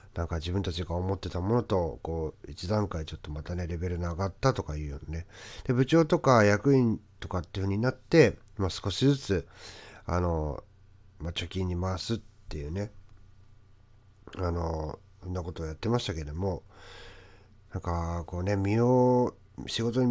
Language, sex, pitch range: Japanese, male, 90-110 Hz